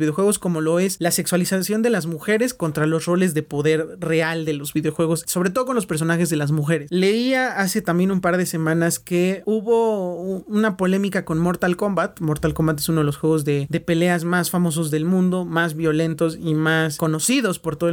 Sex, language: male, Spanish